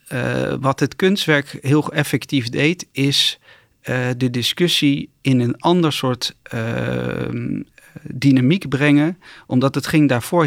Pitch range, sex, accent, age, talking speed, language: 125-145 Hz, male, Dutch, 40-59, 125 wpm, Dutch